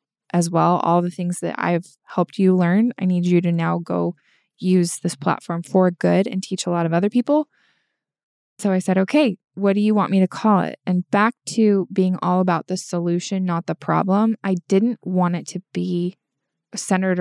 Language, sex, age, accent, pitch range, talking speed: English, female, 20-39, American, 175-200 Hz, 200 wpm